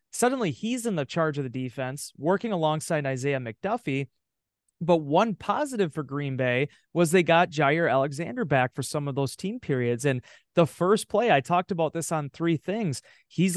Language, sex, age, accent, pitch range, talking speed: English, male, 30-49, American, 130-165 Hz, 185 wpm